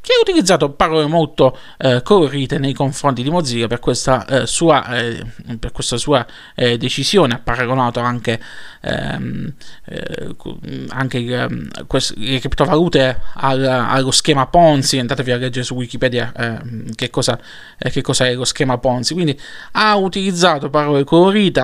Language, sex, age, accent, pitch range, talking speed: Italian, male, 20-39, native, 130-170 Hz, 130 wpm